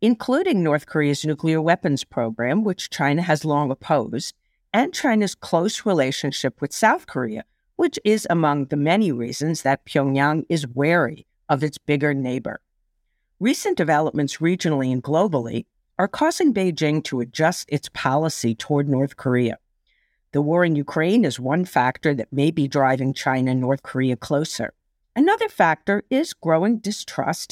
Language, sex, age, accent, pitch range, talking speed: English, female, 50-69, American, 140-190 Hz, 150 wpm